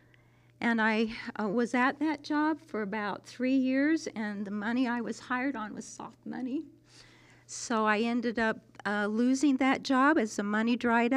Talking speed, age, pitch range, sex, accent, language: 175 wpm, 50-69, 170-265 Hz, female, American, English